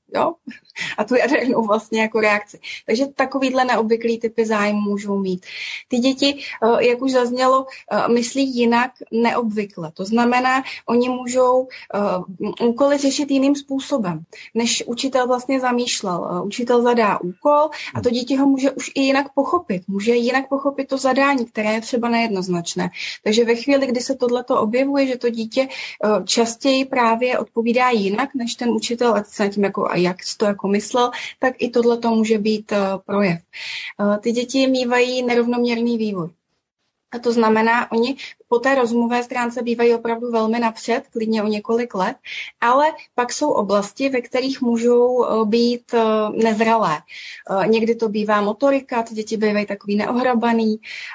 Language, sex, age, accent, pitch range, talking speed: Czech, female, 30-49, native, 210-250 Hz, 150 wpm